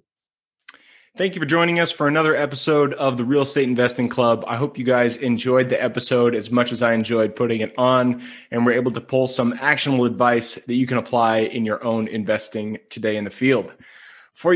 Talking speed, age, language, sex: 205 wpm, 20-39, English, male